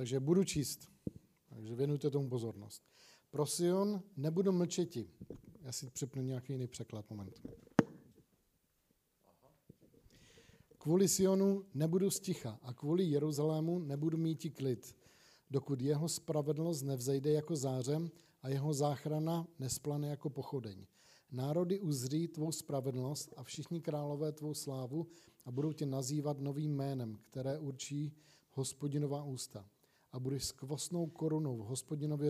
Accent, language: native, Czech